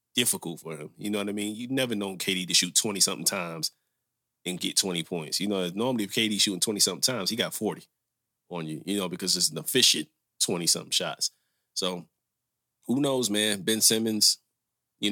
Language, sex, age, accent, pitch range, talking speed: English, male, 30-49, American, 95-115 Hz, 190 wpm